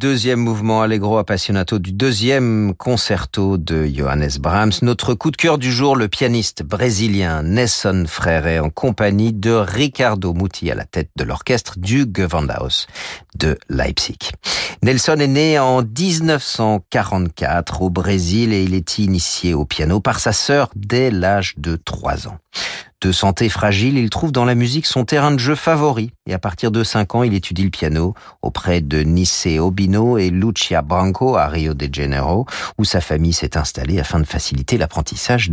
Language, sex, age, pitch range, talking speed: French, male, 40-59, 85-120 Hz, 165 wpm